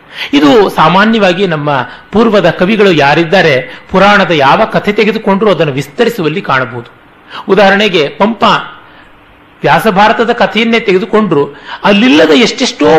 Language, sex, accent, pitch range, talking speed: Kannada, male, native, 145-215 Hz, 90 wpm